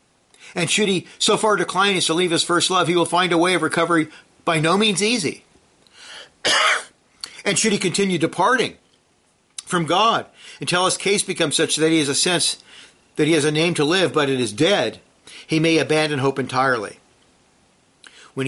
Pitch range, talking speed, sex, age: 140-185 Hz, 185 wpm, male, 50-69